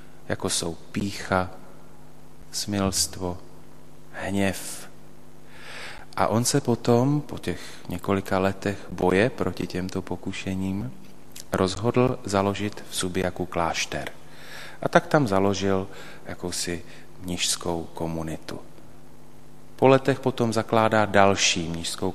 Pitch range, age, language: 90-110 Hz, 30-49, Slovak